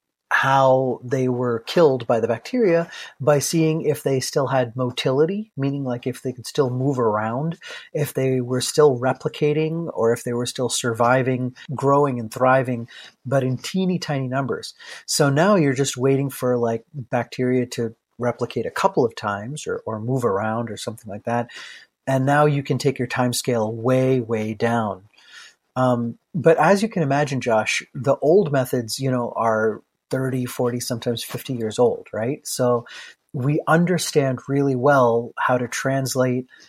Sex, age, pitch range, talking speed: male, 30-49, 120-140 Hz, 165 wpm